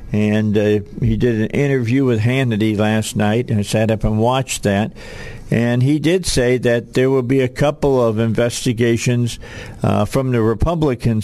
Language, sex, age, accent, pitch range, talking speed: English, male, 50-69, American, 110-125 Hz, 175 wpm